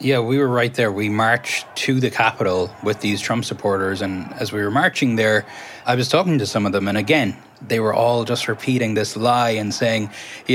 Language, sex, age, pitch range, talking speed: English, male, 20-39, 115-140 Hz, 220 wpm